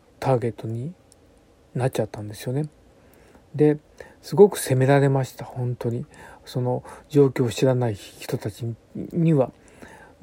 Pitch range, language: 115-140 Hz, Japanese